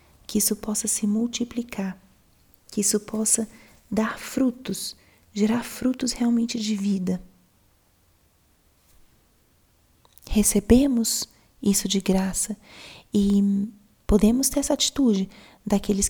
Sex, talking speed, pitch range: female, 95 wpm, 195-230 Hz